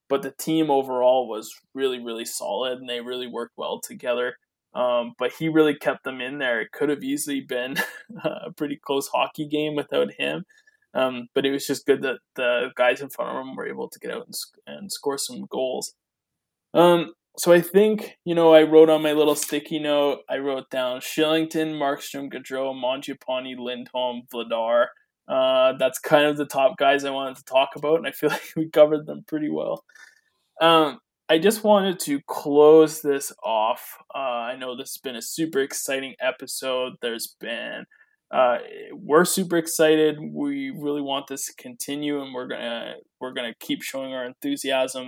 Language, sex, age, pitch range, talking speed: English, male, 20-39, 130-160 Hz, 185 wpm